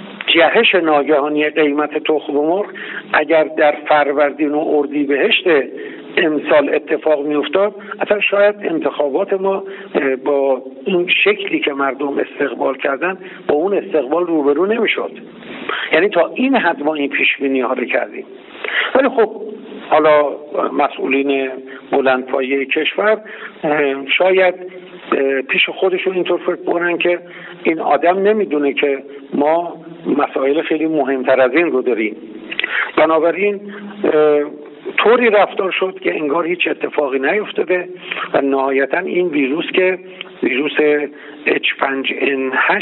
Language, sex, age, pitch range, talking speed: Persian, male, 50-69, 145-195 Hz, 115 wpm